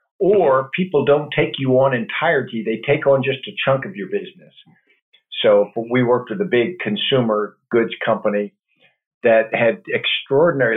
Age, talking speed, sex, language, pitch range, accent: 50-69, 160 wpm, male, English, 110-135 Hz, American